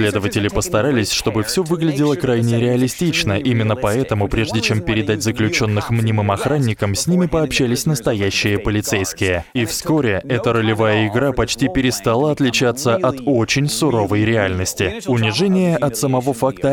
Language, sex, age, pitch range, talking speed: Russian, male, 20-39, 110-140 Hz, 130 wpm